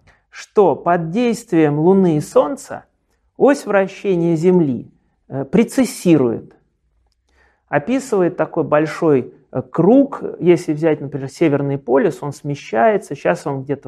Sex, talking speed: male, 105 wpm